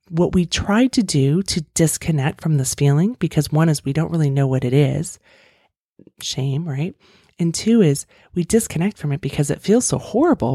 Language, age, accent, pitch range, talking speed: English, 30-49, American, 135-170 Hz, 195 wpm